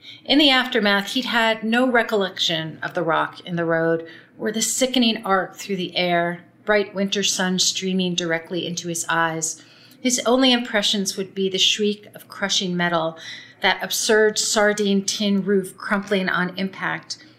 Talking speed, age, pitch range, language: 160 wpm, 40-59, 165-200 Hz, English